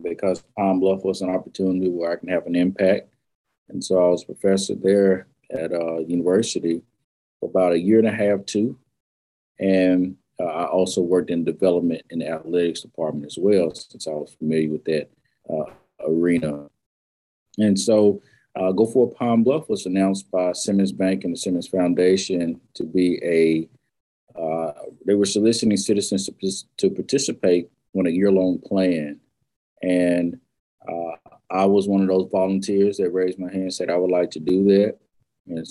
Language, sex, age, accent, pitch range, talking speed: English, male, 40-59, American, 85-100 Hz, 175 wpm